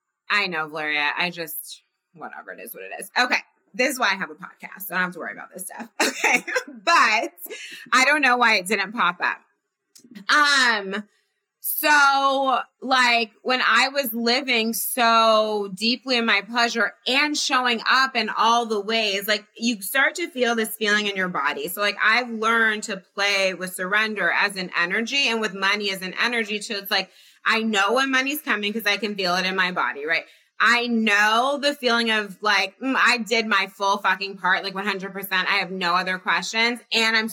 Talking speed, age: 200 wpm, 20-39